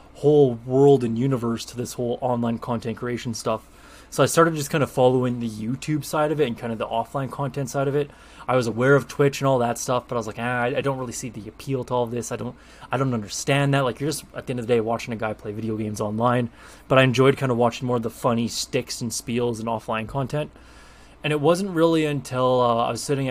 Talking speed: 265 wpm